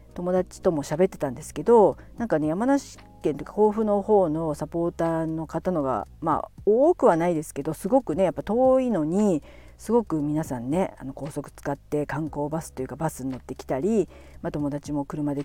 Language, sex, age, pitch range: Japanese, female, 50-69, 140-185 Hz